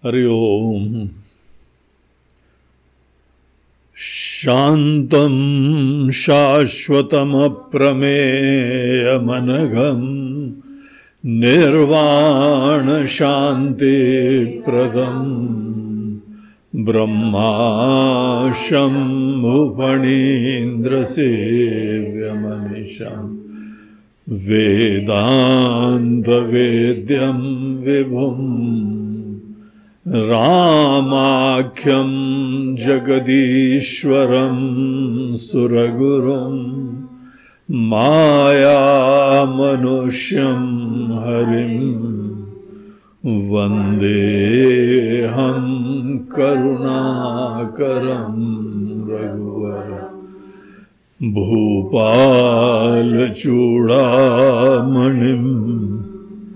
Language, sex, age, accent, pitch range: Hindi, male, 60-79, native, 110-135 Hz